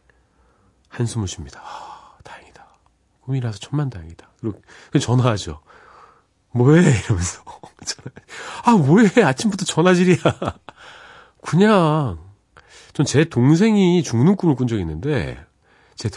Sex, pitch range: male, 95-140 Hz